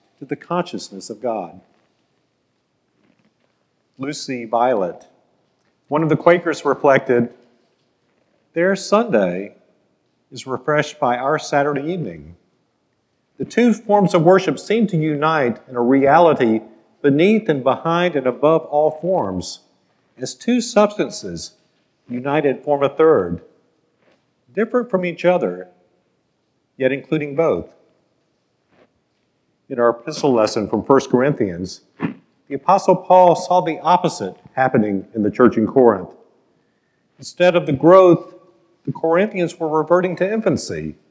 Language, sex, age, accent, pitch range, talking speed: English, male, 50-69, American, 130-180 Hz, 120 wpm